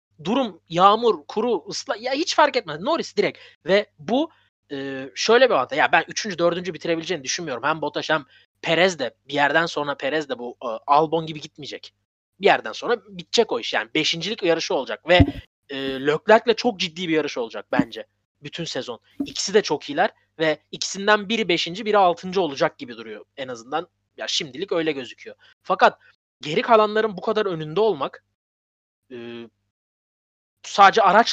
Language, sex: Turkish, male